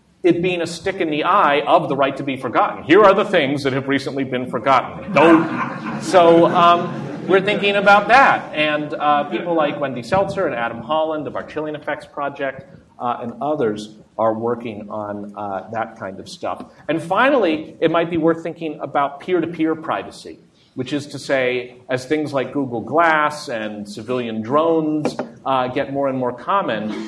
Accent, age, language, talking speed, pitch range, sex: American, 40-59, English, 180 wpm, 120-165 Hz, male